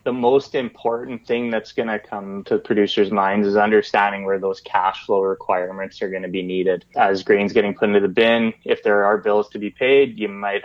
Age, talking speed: 20-39, 225 wpm